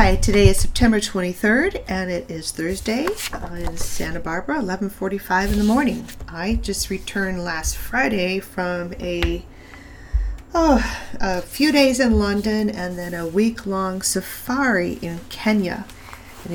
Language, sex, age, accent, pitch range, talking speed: English, female, 40-59, American, 140-190 Hz, 135 wpm